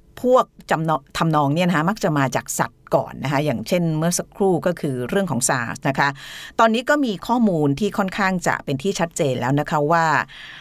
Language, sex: Thai, female